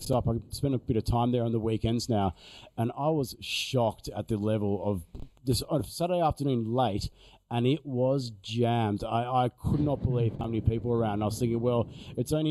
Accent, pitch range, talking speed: Australian, 110-130 Hz, 220 wpm